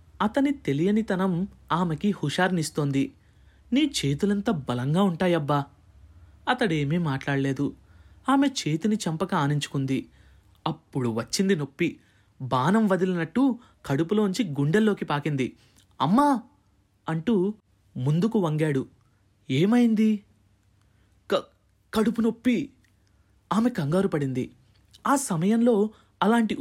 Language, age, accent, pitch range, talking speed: Telugu, 20-39, native, 130-210 Hz, 75 wpm